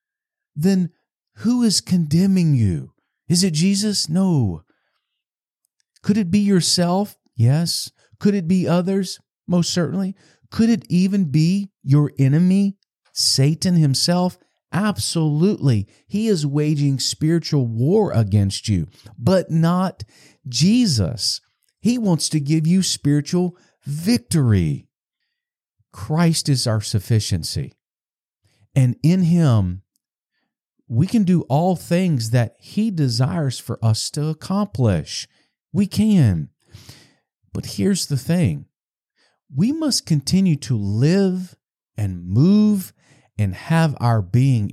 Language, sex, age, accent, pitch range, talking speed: English, male, 50-69, American, 125-185 Hz, 110 wpm